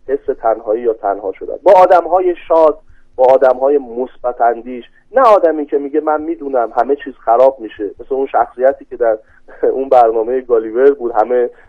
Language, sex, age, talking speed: Persian, male, 30-49, 165 wpm